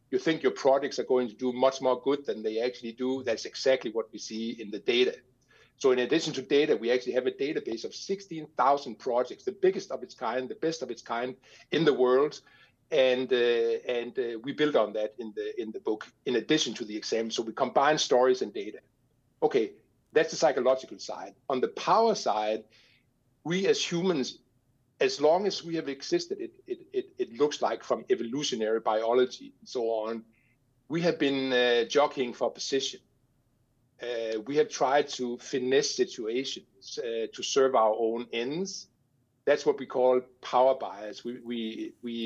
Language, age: English, 60-79